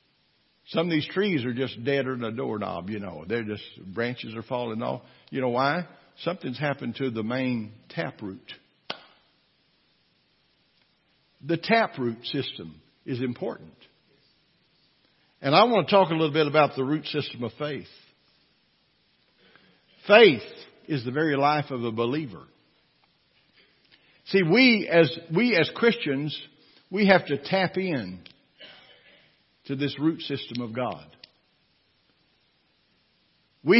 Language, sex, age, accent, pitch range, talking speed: English, male, 60-79, American, 130-175 Hz, 130 wpm